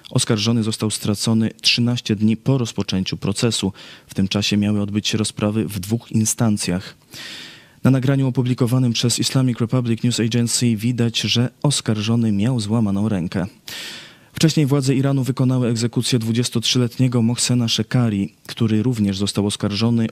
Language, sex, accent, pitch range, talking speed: Polish, male, native, 105-120 Hz, 130 wpm